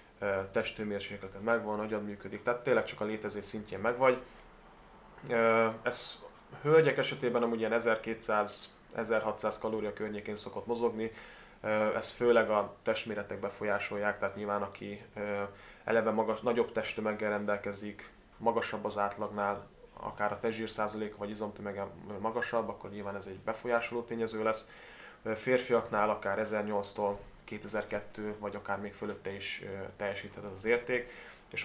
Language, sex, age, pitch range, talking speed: Hungarian, male, 20-39, 100-115 Hz, 120 wpm